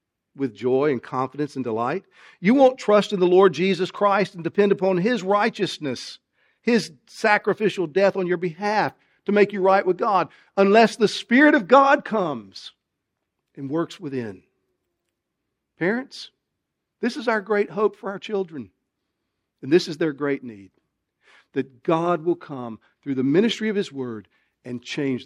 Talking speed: 160 wpm